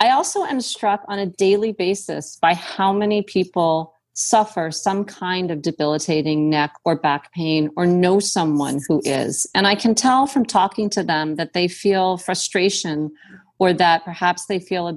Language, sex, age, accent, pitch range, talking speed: English, female, 40-59, American, 160-195 Hz, 175 wpm